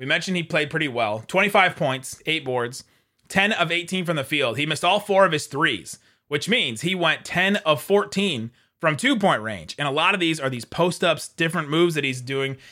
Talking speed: 215 wpm